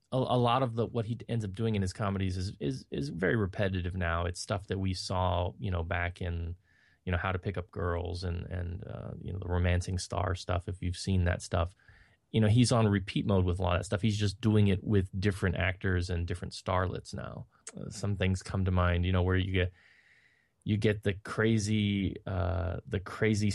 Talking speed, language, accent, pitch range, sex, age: 225 wpm, English, American, 90-110 Hz, male, 20-39